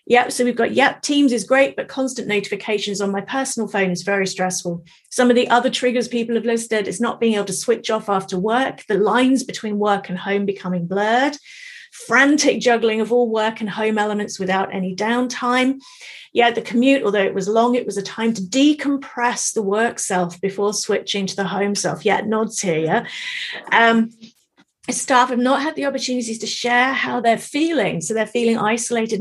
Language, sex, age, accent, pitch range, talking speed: English, female, 40-59, British, 205-250 Hz, 195 wpm